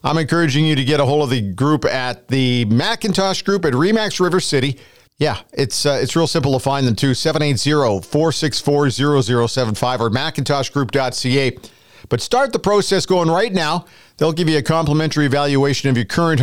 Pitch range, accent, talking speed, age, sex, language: 125-160 Hz, American, 170 wpm, 50-69, male, English